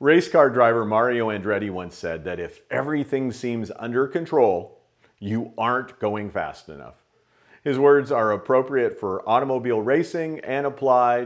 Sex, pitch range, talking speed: male, 100-140 Hz, 145 wpm